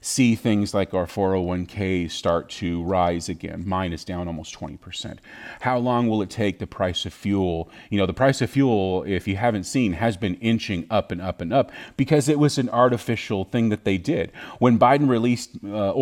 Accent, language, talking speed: American, English, 220 wpm